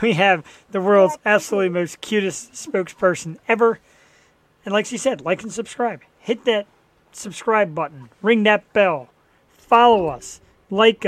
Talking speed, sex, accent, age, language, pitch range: 140 wpm, male, American, 40-59, English, 175-230 Hz